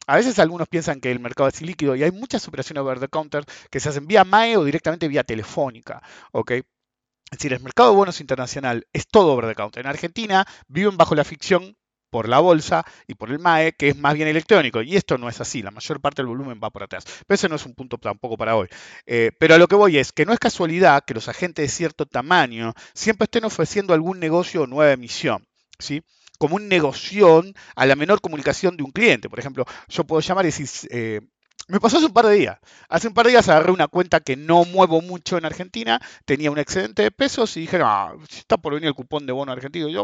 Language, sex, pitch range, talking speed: English, male, 130-185 Hz, 245 wpm